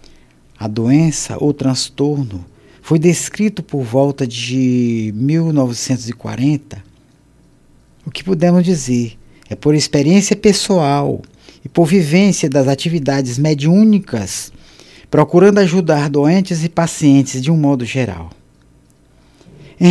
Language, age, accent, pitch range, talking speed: Portuguese, 50-69, Brazilian, 115-170 Hz, 100 wpm